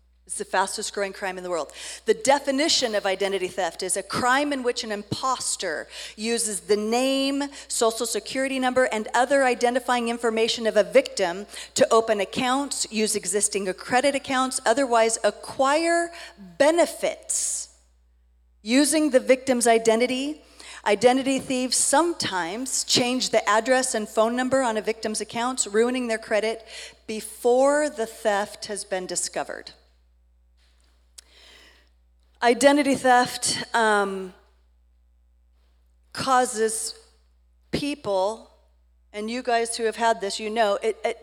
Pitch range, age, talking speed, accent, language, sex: 175-255 Hz, 40-59, 120 wpm, American, English, female